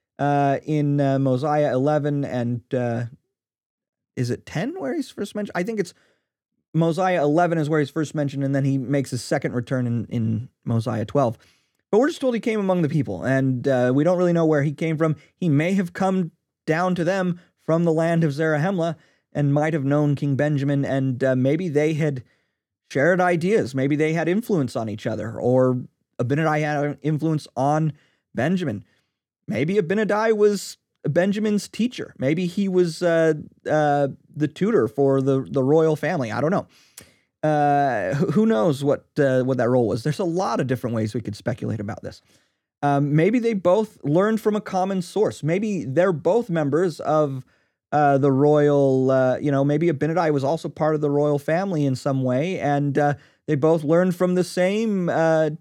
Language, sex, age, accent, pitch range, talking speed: English, male, 30-49, American, 140-175 Hz, 190 wpm